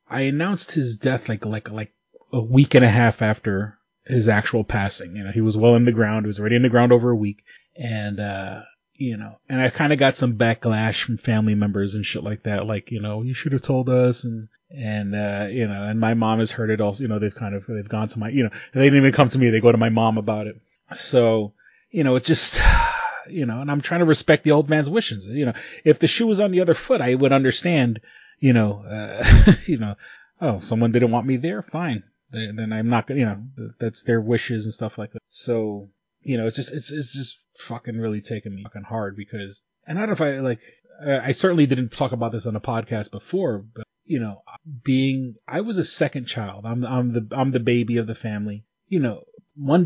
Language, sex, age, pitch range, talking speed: English, male, 30-49, 110-130 Hz, 245 wpm